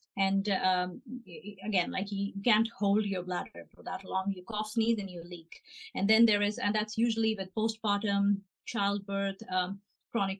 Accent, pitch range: Indian, 195-225 Hz